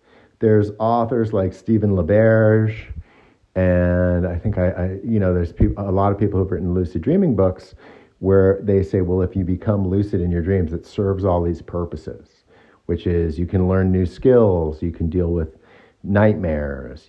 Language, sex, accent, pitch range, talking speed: English, male, American, 85-105 Hz, 185 wpm